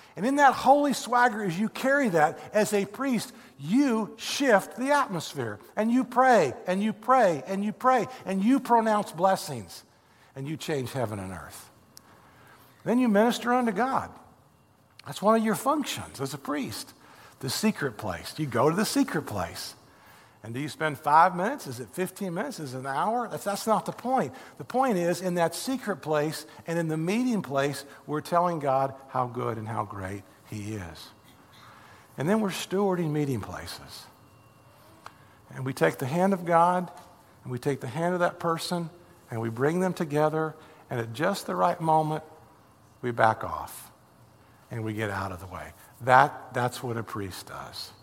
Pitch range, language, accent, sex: 125-210 Hz, English, American, male